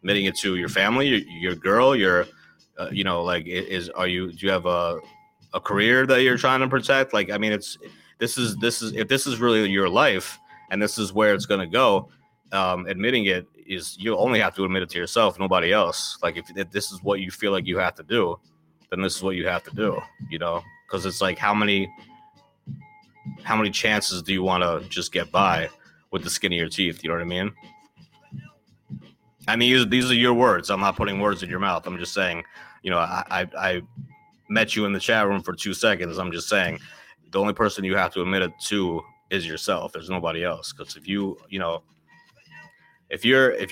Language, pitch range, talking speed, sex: English, 90-120 Hz, 230 wpm, male